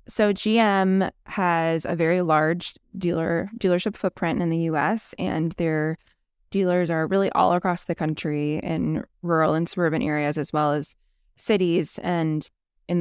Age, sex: 20-39, female